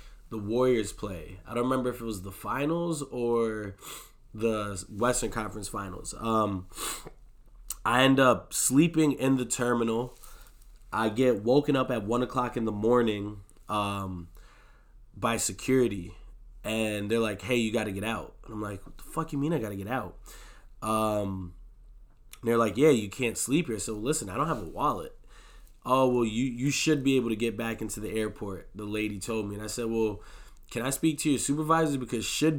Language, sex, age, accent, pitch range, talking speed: English, male, 20-39, American, 105-125 Hz, 190 wpm